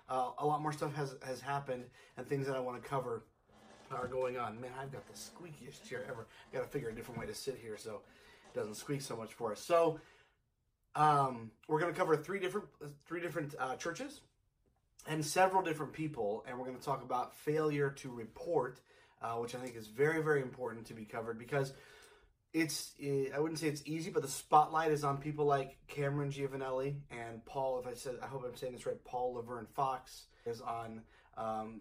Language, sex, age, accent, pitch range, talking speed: English, male, 30-49, American, 125-150 Hz, 210 wpm